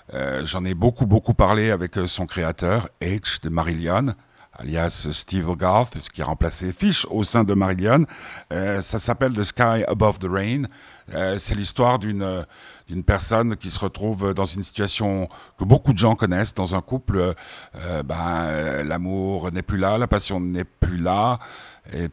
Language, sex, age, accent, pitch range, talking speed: French, male, 60-79, French, 85-105 Hz, 175 wpm